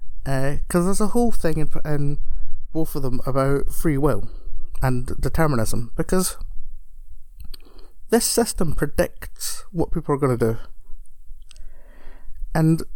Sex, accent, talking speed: male, British, 125 wpm